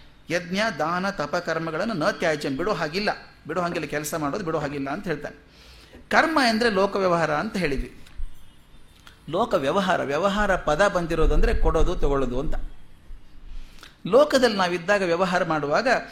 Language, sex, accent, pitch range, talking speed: Kannada, male, native, 155-220 Hz, 115 wpm